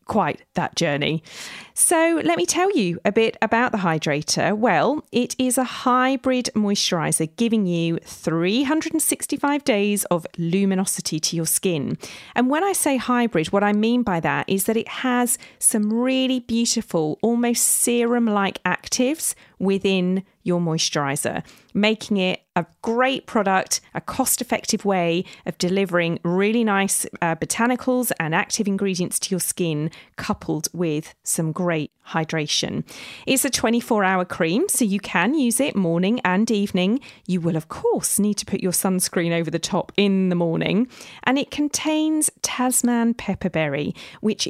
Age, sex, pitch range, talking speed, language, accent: 40-59, female, 175-245 Hz, 145 wpm, English, British